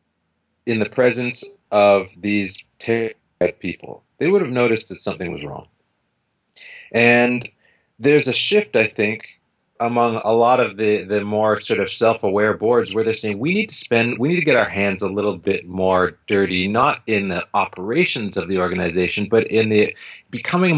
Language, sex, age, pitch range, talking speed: English, male, 30-49, 95-120 Hz, 175 wpm